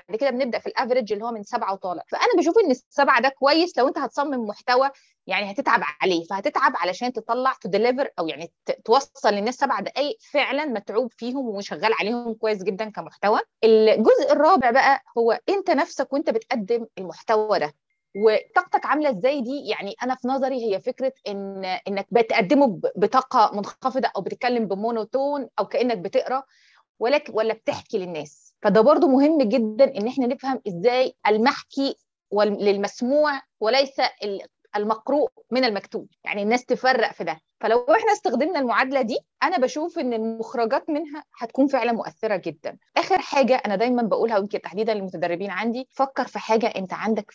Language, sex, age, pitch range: Arabic, female, 20-39, 210-275 Hz